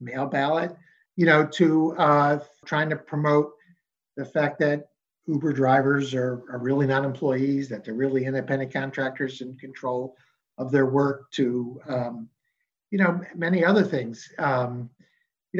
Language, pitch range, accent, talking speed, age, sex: English, 145-195 Hz, American, 145 wpm, 50-69, male